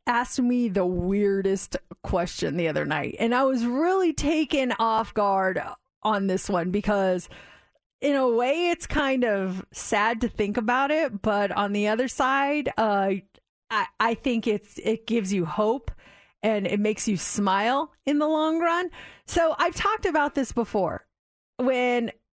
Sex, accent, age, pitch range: female, American, 30-49, 205-275 Hz